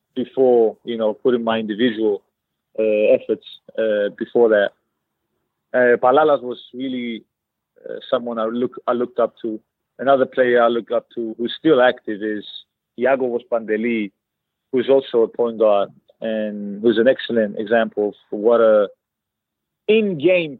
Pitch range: 110-130 Hz